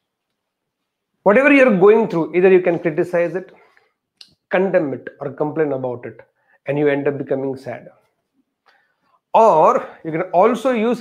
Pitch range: 150-210 Hz